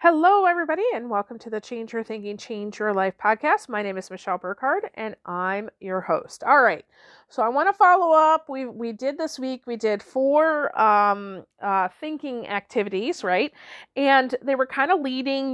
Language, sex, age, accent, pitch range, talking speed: English, female, 40-59, American, 205-275 Hz, 190 wpm